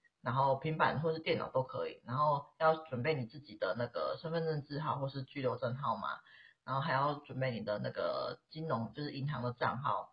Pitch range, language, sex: 130-165 Hz, Chinese, female